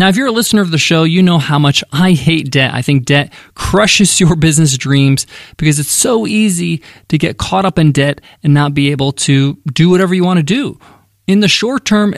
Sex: male